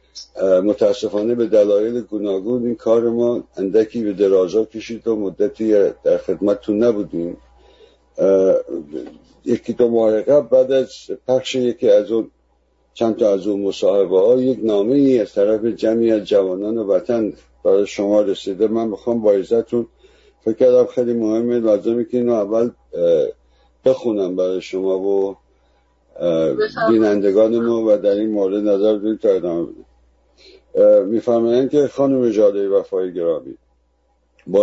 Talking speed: 130 wpm